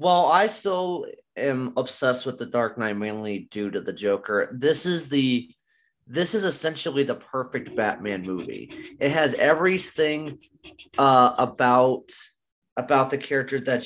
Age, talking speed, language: 30-49, 145 wpm, English